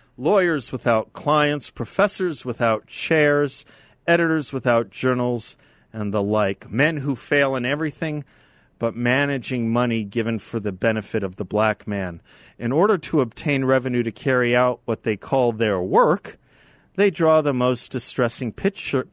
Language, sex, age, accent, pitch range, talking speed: English, male, 40-59, American, 110-145 Hz, 145 wpm